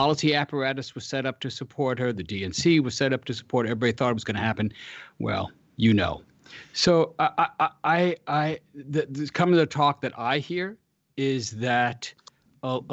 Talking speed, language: 205 wpm, English